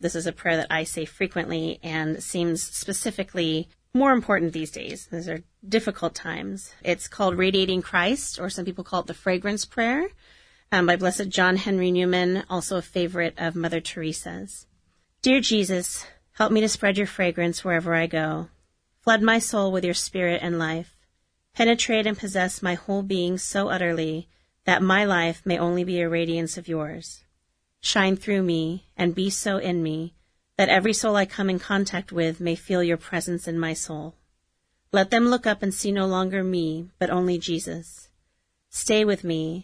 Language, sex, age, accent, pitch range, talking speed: English, female, 30-49, American, 165-195 Hz, 180 wpm